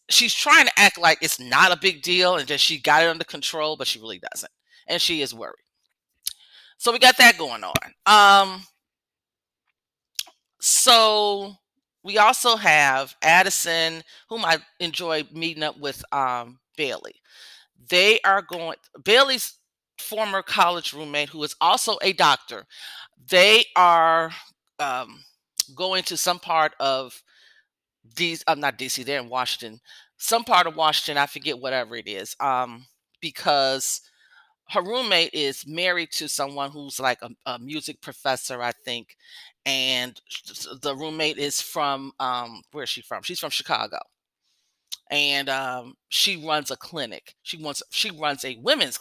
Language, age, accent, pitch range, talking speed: English, 40-59, American, 140-190 Hz, 150 wpm